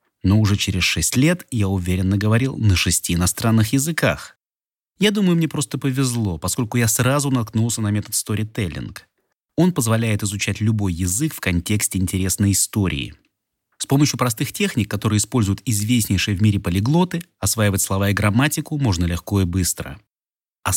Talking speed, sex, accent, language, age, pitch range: 150 wpm, male, native, Russian, 30-49, 95-130 Hz